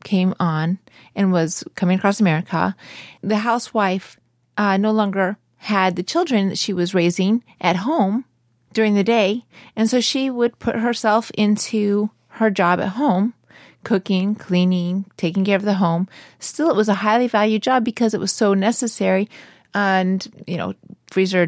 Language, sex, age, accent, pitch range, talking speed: English, female, 30-49, American, 185-220 Hz, 160 wpm